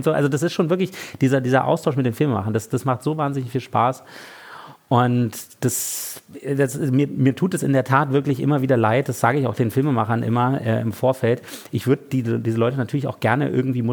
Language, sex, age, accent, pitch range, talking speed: German, male, 30-49, German, 120-140 Hz, 220 wpm